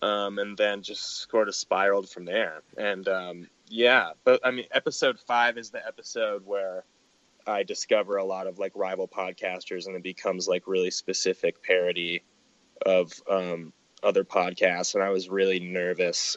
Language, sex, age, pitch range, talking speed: English, male, 20-39, 95-130 Hz, 165 wpm